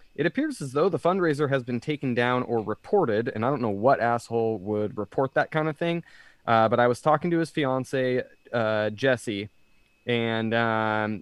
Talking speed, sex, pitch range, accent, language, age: 195 wpm, male, 105-130 Hz, American, English, 20-39